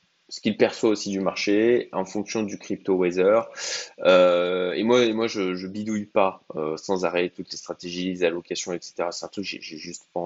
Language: French